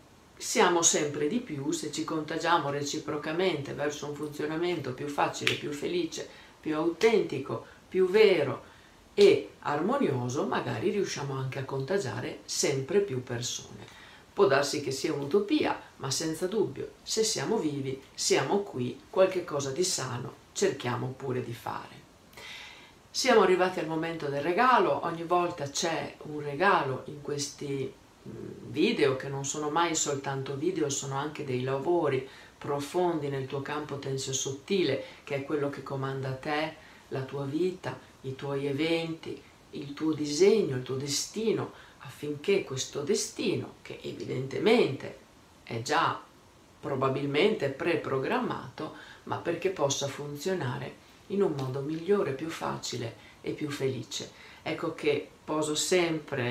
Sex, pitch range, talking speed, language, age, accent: female, 135-170 Hz, 130 wpm, Italian, 50-69, native